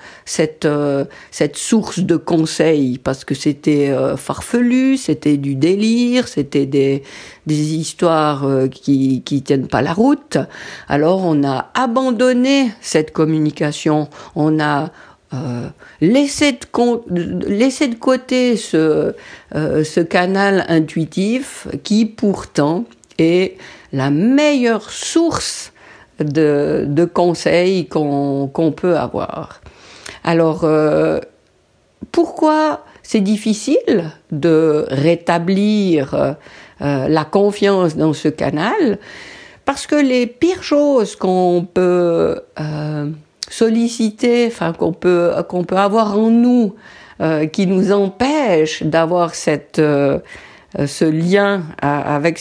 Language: French